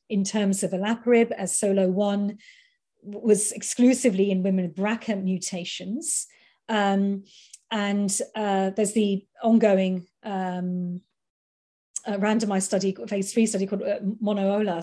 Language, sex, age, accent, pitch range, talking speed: English, female, 40-59, British, 190-215 Hz, 115 wpm